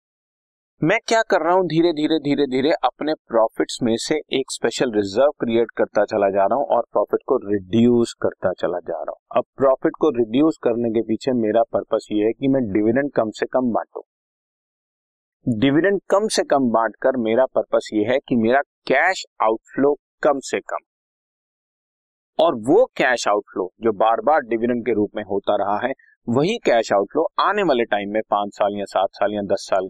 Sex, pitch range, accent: male, 110-165 Hz, native